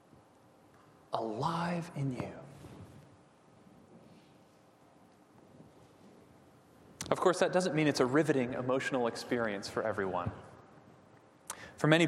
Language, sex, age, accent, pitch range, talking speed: English, male, 30-49, American, 130-180 Hz, 85 wpm